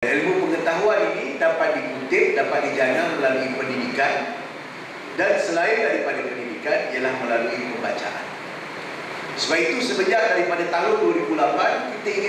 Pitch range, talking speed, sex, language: 150-200 Hz, 115 wpm, male, Malay